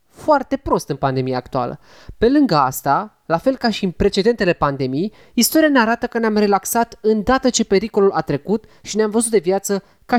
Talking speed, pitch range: 190 wpm, 175-240 Hz